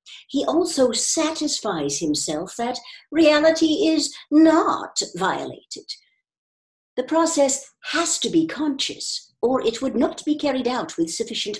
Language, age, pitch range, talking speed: English, 60-79, 230-335 Hz, 125 wpm